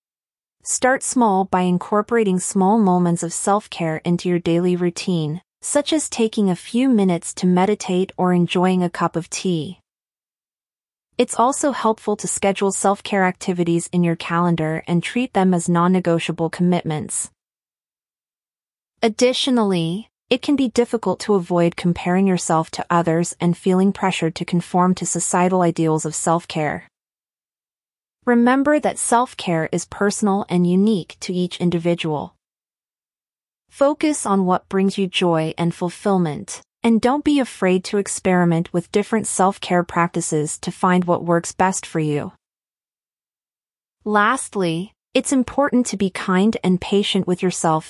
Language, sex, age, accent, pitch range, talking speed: English, female, 30-49, American, 170-205 Hz, 135 wpm